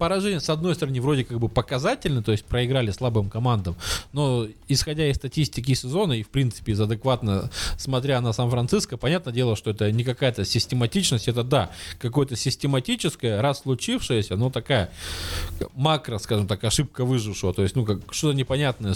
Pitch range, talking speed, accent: 100-140 Hz, 165 wpm, native